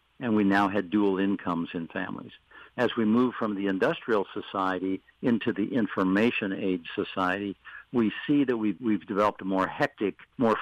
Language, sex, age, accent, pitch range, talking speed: English, male, 60-79, American, 95-110 Hz, 170 wpm